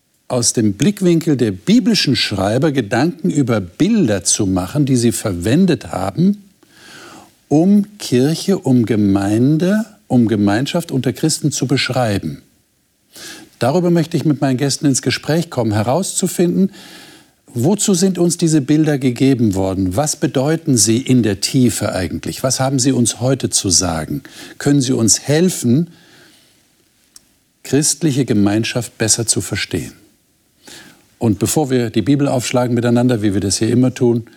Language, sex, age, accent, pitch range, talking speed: German, male, 50-69, German, 110-160 Hz, 135 wpm